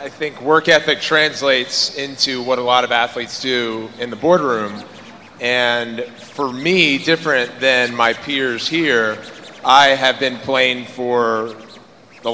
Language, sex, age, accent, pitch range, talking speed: English, male, 30-49, American, 120-140 Hz, 140 wpm